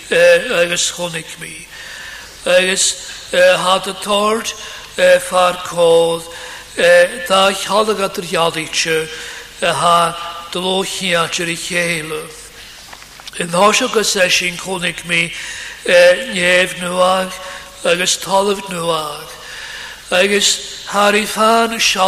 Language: English